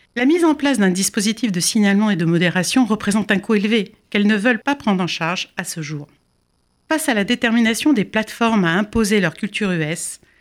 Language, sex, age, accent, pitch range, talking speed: French, female, 60-79, French, 170-225 Hz, 210 wpm